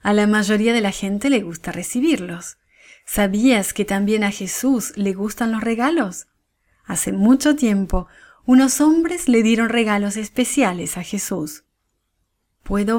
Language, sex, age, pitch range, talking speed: English, female, 30-49, 190-250 Hz, 140 wpm